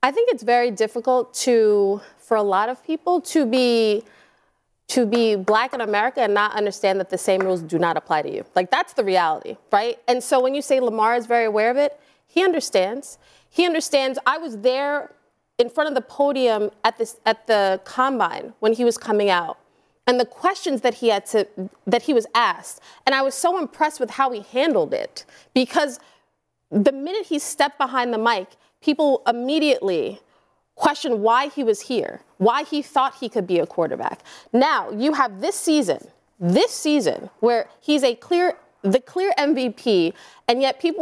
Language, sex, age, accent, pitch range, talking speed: English, female, 30-49, American, 220-290 Hz, 190 wpm